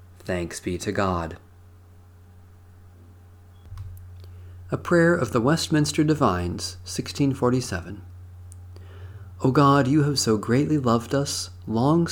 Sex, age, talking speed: male, 40-59, 100 wpm